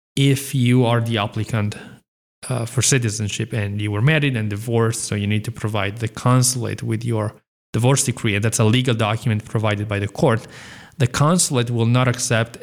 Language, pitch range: English, 110-125 Hz